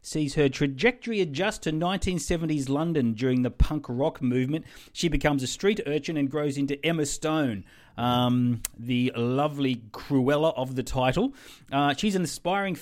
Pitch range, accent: 125-155 Hz, Australian